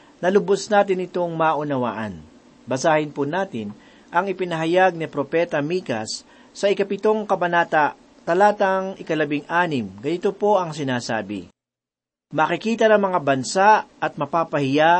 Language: Filipino